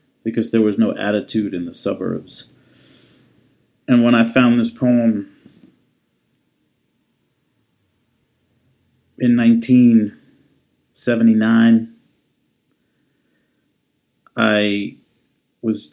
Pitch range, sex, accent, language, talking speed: 105-120 Hz, male, American, English, 70 wpm